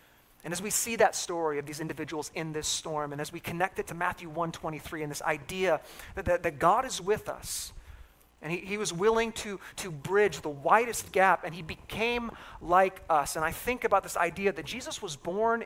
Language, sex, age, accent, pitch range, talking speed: English, male, 40-59, American, 130-195 Hz, 220 wpm